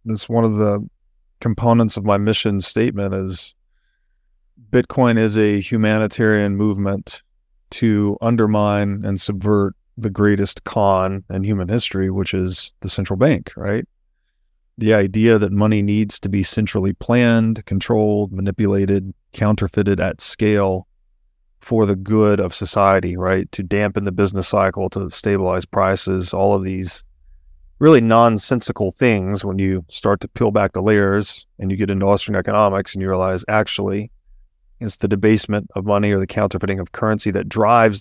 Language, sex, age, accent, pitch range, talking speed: English, male, 30-49, American, 95-110 Hz, 150 wpm